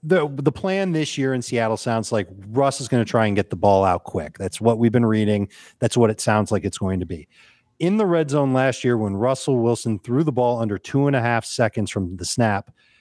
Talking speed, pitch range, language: 255 wpm, 105-140 Hz, English